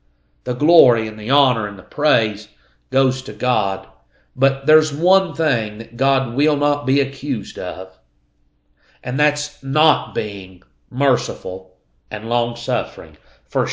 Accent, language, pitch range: American, English, 110-145 Hz